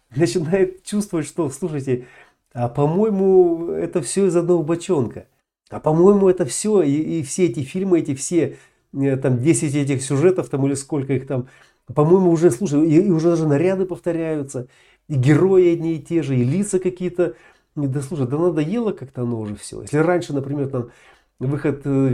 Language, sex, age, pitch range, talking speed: Russian, male, 40-59, 130-175 Hz, 175 wpm